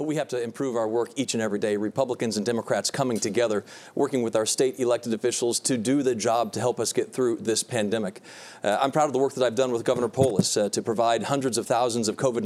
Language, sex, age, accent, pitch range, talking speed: English, male, 40-59, American, 125-160 Hz, 250 wpm